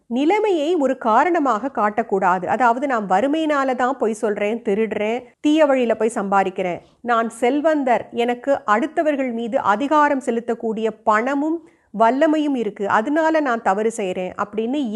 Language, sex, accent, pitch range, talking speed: Tamil, female, native, 215-290 Hz, 110 wpm